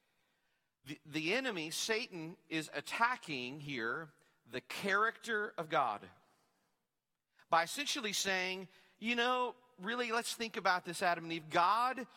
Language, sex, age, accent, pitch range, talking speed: English, male, 40-59, American, 160-245 Hz, 125 wpm